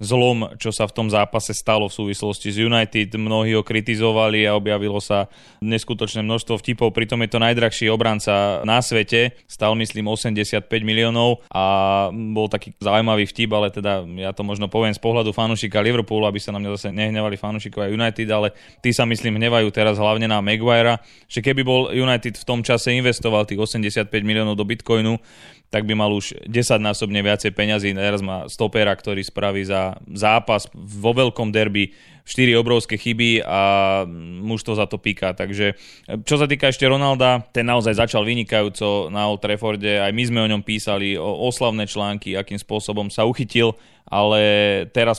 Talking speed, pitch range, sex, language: 170 wpm, 105-115 Hz, male, Slovak